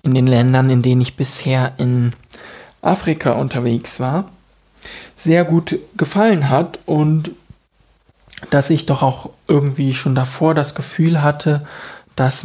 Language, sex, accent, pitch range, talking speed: German, male, German, 120-155 Hz, 130 wpm